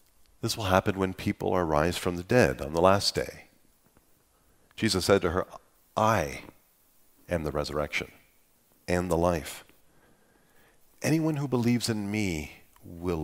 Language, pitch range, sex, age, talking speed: English, 90-135 Hz, male, 50-69, 135 wpm